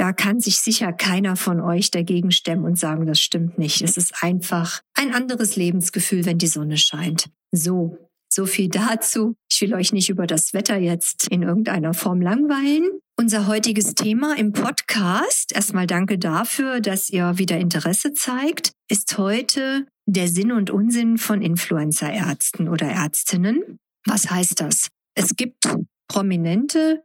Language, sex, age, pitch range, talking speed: German, female, 50-69, 180-230 Hz, 155 wpm